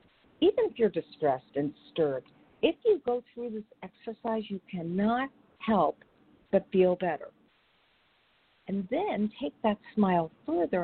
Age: 50-69